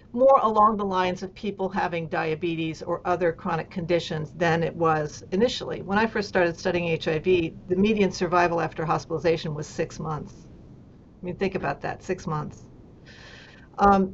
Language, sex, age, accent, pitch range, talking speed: English, female, 50-69, American, 180-225 Hz, 160 wpm